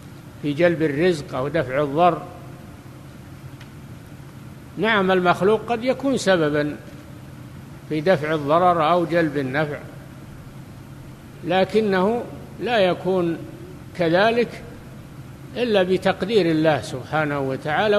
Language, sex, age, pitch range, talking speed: Arabic, male, 60-79, 145-180 Hz, 85 wpm